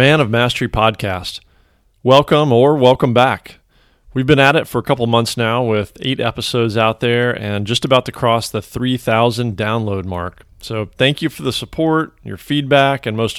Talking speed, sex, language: 185 wpm, male, English